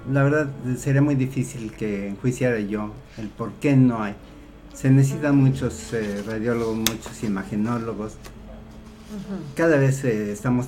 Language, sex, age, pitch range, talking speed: Spanish, male, 50-69, 110-135 Hz, 135 wpm